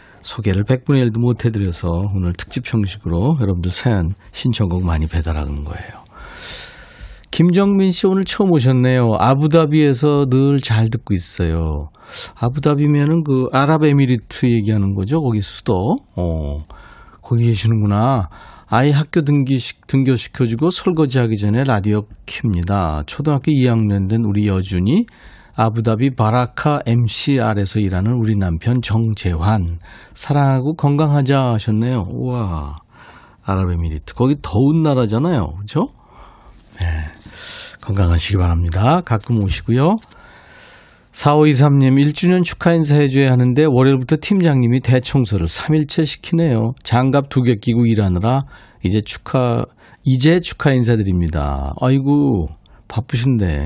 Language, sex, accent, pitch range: Korean, male, native, 100-140 Hz